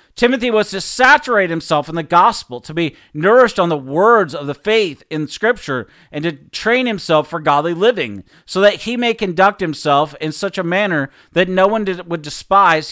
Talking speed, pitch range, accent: 190 wpm, 150-195 Hz, American